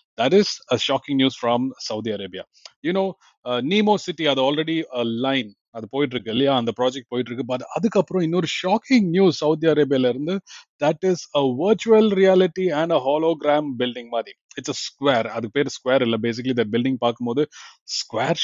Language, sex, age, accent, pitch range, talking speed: Tamil, male, 30-49, native, 115-160 Hz, 175 wpm